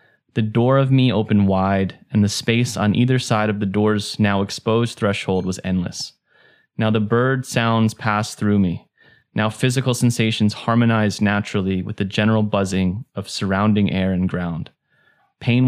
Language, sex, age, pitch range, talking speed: English, male, 20-39, 100-120 Hz, 160 wpm